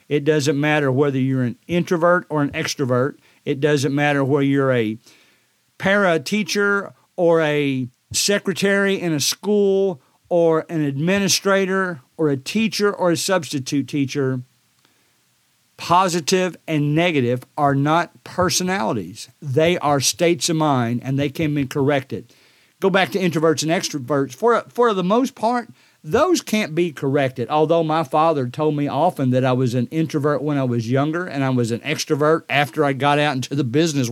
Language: English